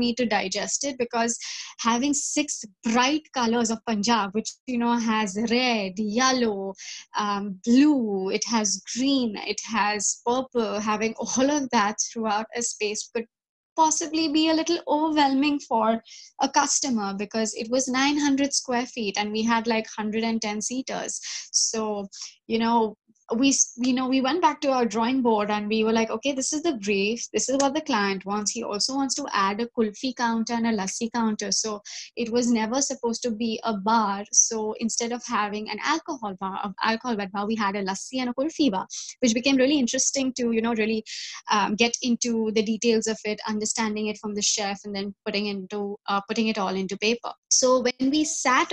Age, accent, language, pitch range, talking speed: 20-39, Indian, English, 215-260 Hz, 190 wpm